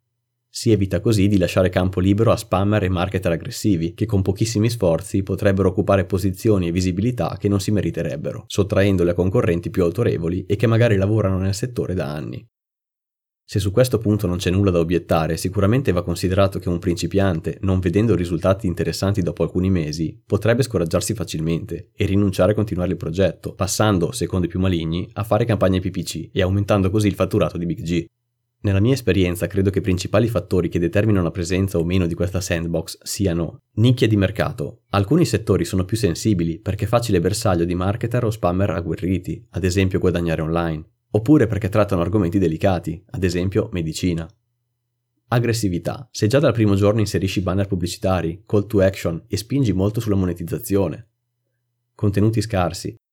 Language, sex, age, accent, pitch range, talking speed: Italian, male, 30-49, native, 90-110 Hz, 170 wpm